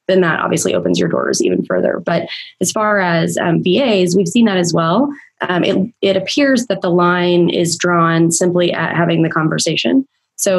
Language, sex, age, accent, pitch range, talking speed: English, female, 20-39, American, 165-185 Hz, 195 wpm